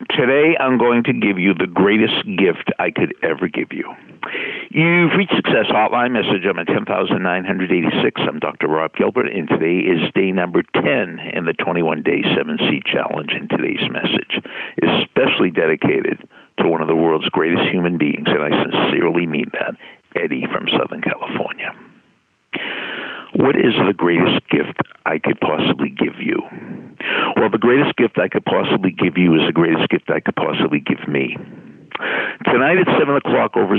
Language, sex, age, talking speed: English, male, 60-79, 165 wpm